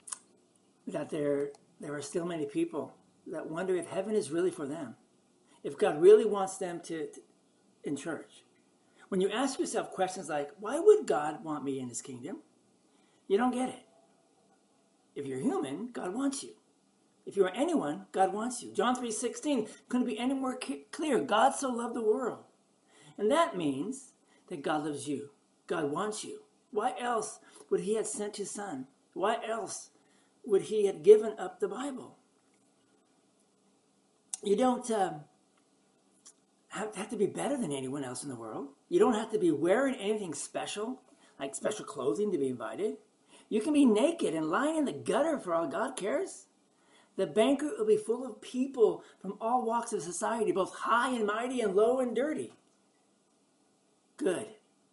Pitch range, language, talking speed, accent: 185-290 Hz, English, 170 wpm, American